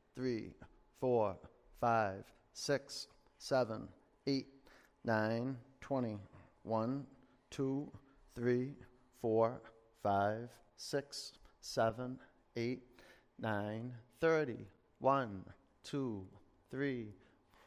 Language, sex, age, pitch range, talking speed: English, male, 40-59, 115-145 Hz, 70 wpm